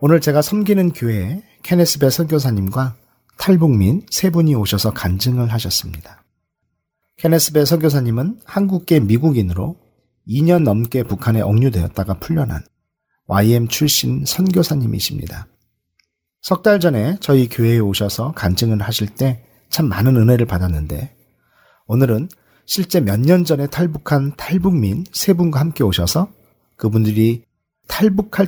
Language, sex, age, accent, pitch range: Korean, male, 40-59, native, 105-155 Hz